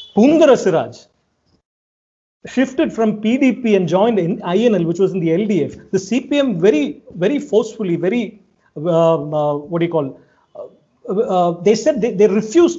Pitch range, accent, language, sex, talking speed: 170-215 Hz, Indian, English, male, 150 wpm